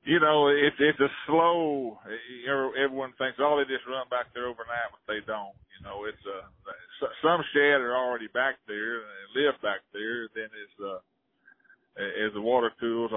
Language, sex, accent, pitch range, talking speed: English, male, American, 115-150 Hz, 180 wpm